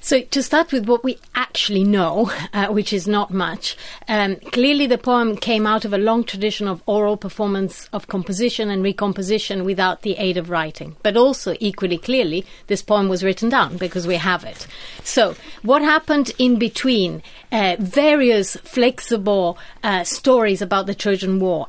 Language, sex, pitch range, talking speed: English, female, 180-225 Hz, 170 wpm